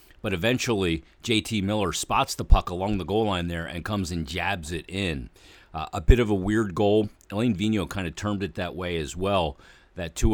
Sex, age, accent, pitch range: male, 40-59, American, 85-105 Hz